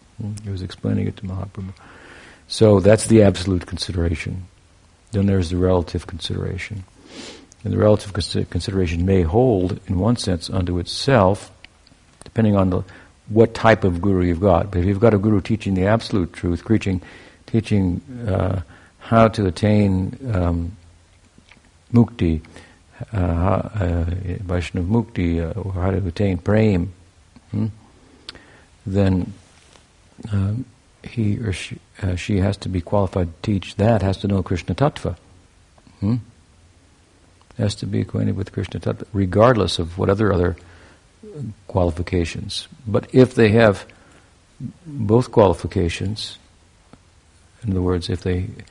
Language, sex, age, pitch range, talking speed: English, male, 60-79, 90-105 Hz, 135 wpm